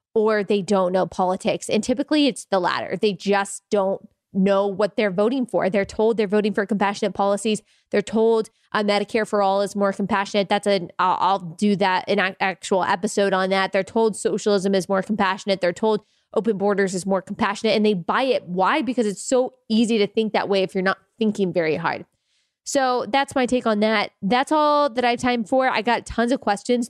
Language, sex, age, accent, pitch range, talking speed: English, female, 20-39, American, 195-235 Hz, 210 wpm